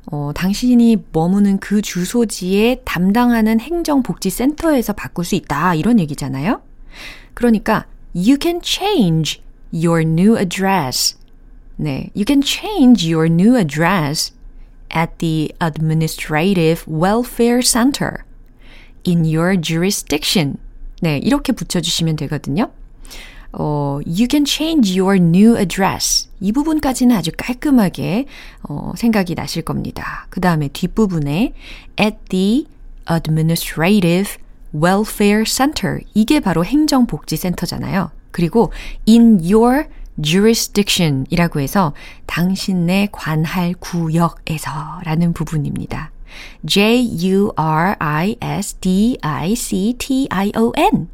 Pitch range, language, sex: 160-230 Hz, Korean, female